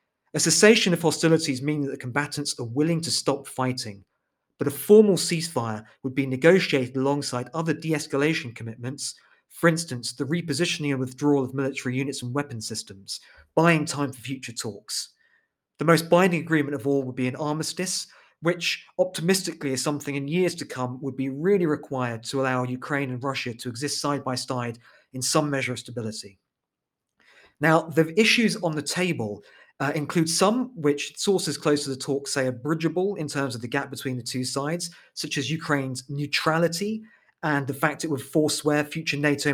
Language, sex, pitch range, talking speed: English, male, 130-160 Hz, 180 wpm